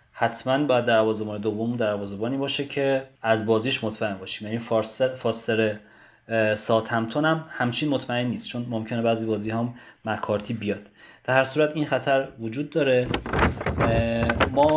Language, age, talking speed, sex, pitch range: Persian, 30-49, 140 wpm, male, 110-135 Hz